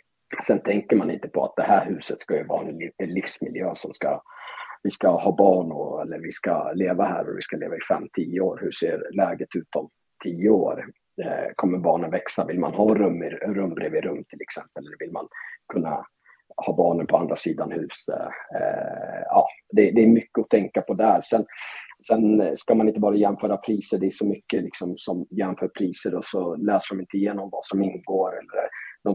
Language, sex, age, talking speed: Swedish, male, 30-49, 200 wpm